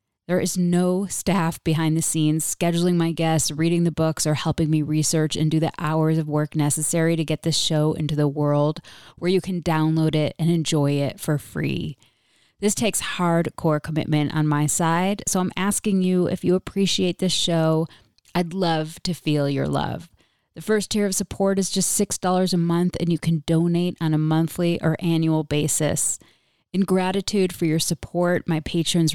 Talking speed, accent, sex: 185 wpm, American, female